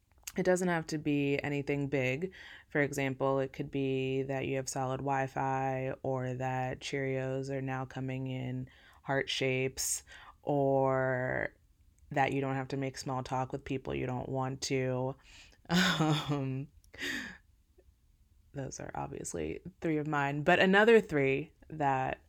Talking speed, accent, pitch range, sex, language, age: 140 wpm, American, 135-160 Hz, female, English, 20-39